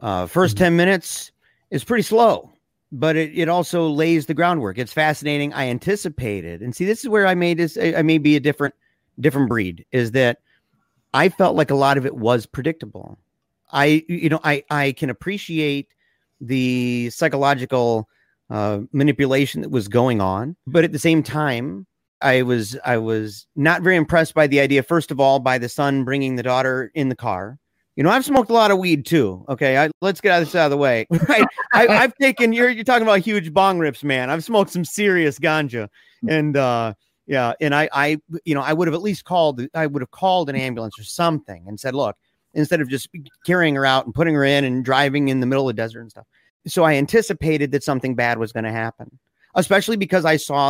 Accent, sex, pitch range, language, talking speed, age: American, male, 125-170 Hz, English, 210 wpm, 40-59